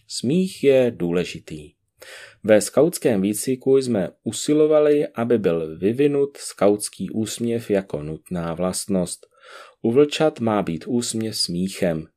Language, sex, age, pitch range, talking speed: Czech, male, 30-49, 95-130 Hz, 105 wpm